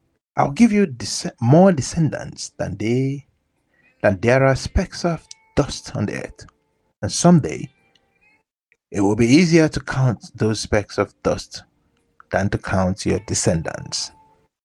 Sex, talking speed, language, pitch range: male, 135 wpm, English, 105-155 Hz